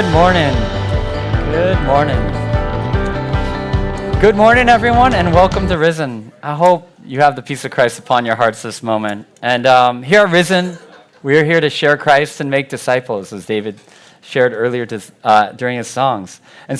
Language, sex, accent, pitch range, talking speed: English, male, American, 120-155 Hz, 170 wpm